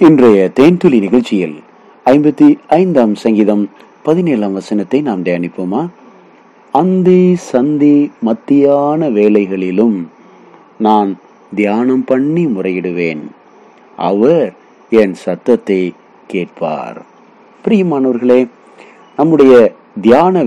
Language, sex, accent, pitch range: Tamil, male, native, 105-150 Hz